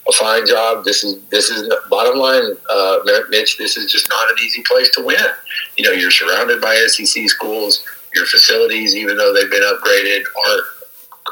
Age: 50-69